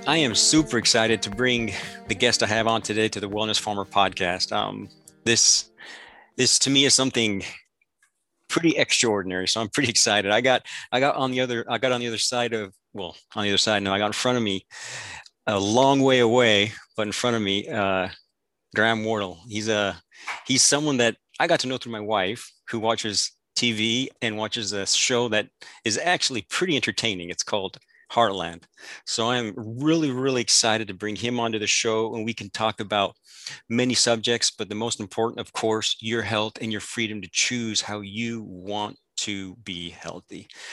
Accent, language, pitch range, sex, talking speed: American, English, 105-120 Hz, male, 195 wpm